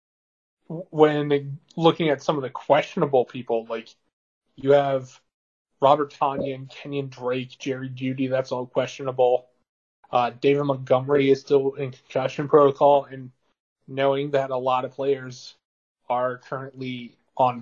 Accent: American